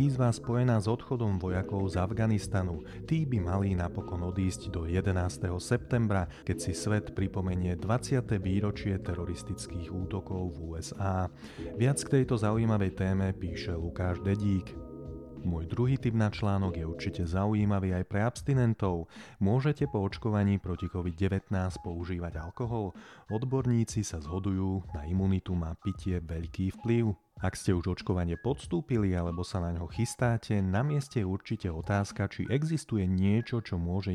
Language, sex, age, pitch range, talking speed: Slovak, male, 30-49, 90-110 Hz, 140 wpm